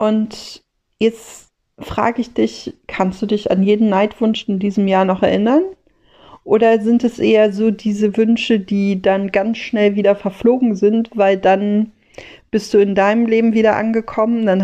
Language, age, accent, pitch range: German, 40-59, German, 190-225 Hz